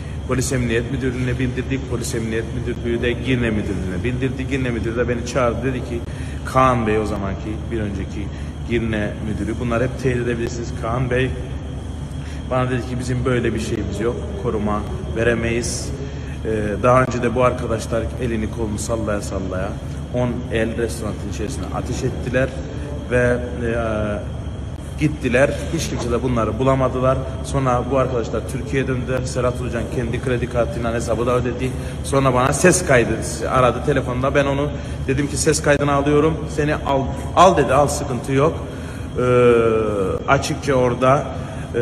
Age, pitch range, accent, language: 30-49, 110-130 Hz, native, Turkish